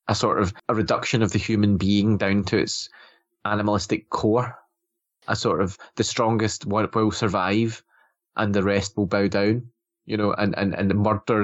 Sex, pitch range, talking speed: male, 100-120 Hz, 175 wpm